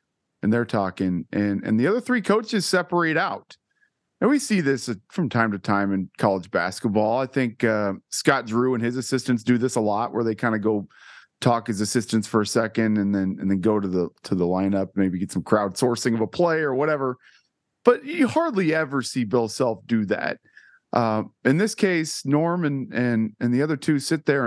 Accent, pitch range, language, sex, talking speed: American, 105-135 Hz, English, male, 210 wpm